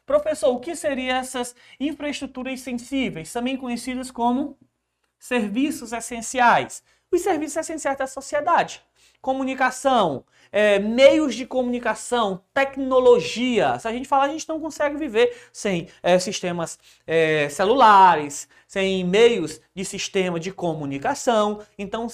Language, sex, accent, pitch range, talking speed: Portuguese, male, Brazilian, 185-255 Hz, 110 wpm